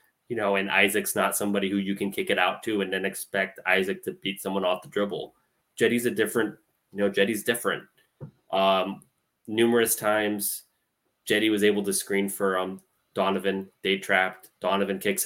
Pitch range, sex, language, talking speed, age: 95-105 Hz, male, English, 175 wpm, 20-39